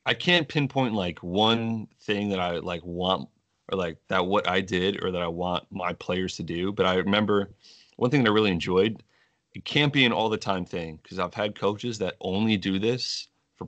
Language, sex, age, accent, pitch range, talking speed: English, male, 30-49, American, 90-110 Hz, 220 wpm